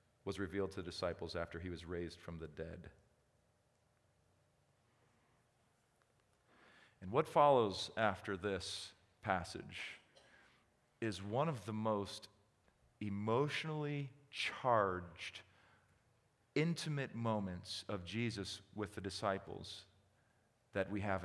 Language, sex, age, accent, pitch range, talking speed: English, male, 40-59, American, 95-120 Hz, 100 wpm